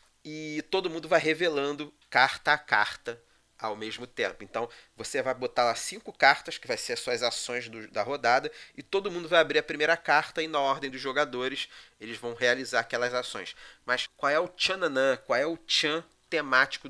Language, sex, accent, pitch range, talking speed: Portuguese, male, Brazilian, 125-170 Hz, 195 wpm